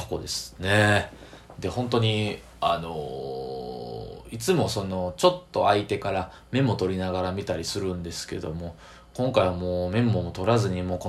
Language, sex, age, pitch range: Japanese, male, 20-39, 90-115 Hz